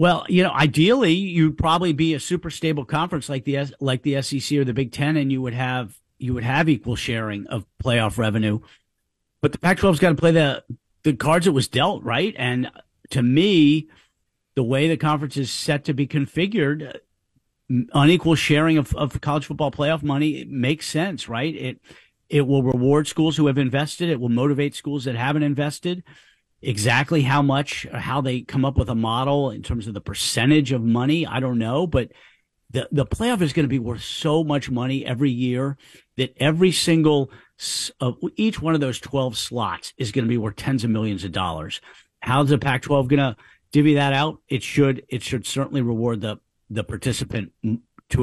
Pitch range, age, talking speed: 120-150 Hz, 50-69, 195 wpm